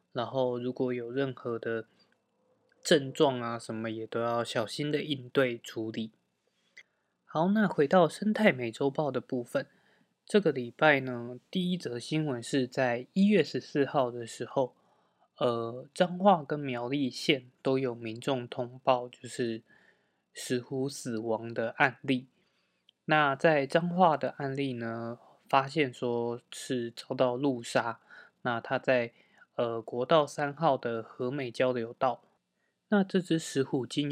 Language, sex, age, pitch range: Chinese, male, 20-39, 120-145 Hz